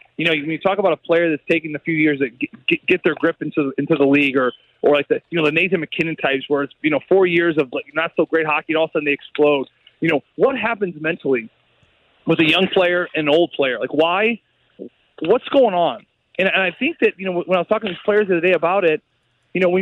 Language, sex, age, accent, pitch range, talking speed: English, male, 30-49, American, 165-235 Hz, 275 wpm